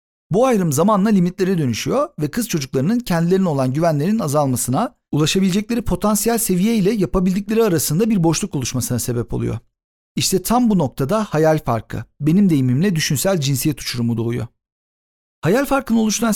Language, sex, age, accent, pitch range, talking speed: Turkish, male, 50-69, native, 135-220 Hz, 140 wpm